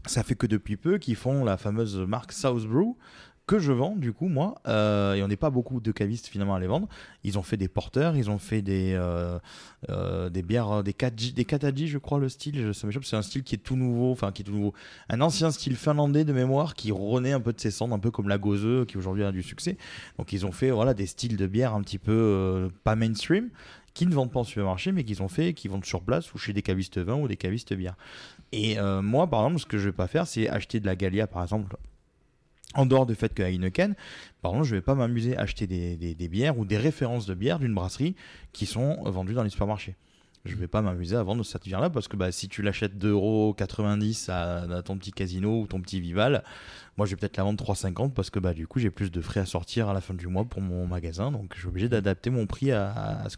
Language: French